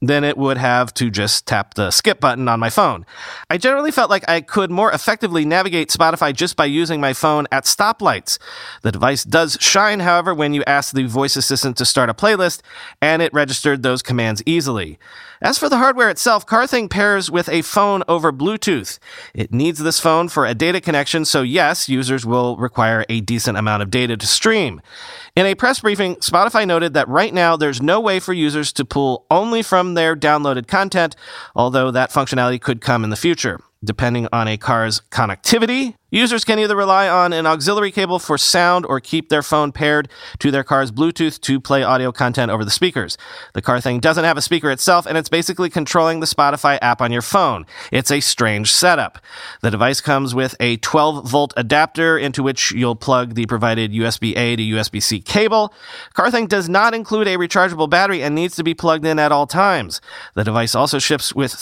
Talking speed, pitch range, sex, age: 200 wpm, 125-180 Hz, male, 40-59